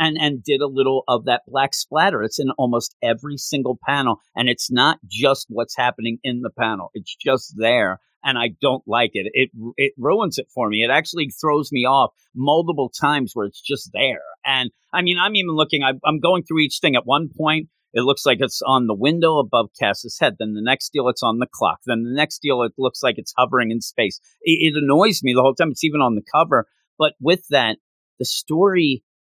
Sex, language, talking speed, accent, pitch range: male, English, 225 wpm, American, 125-155 Hz